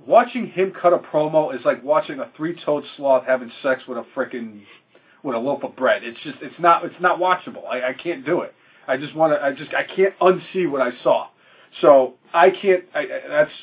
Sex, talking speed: male, 215 wpm